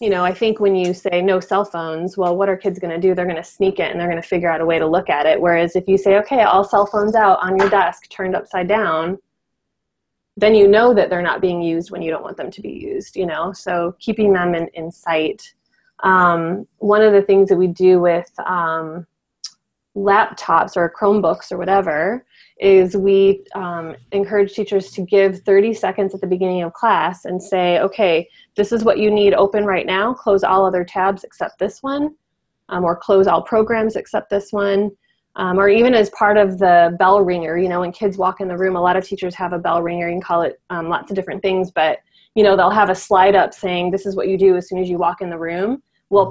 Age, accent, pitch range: 20-39, American, 175-200 Hz